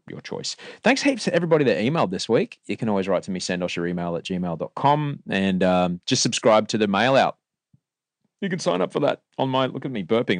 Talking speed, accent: 240 wpm, Australian